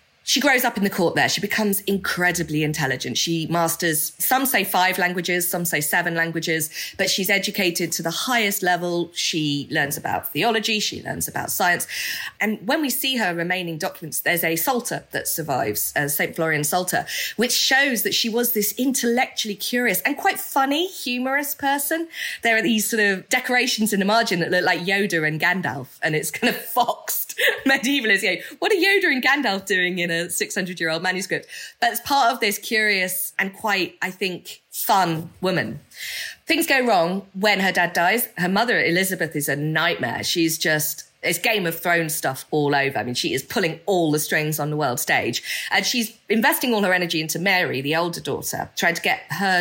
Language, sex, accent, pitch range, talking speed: English, female, British, 165-230 Hz, 195 wpm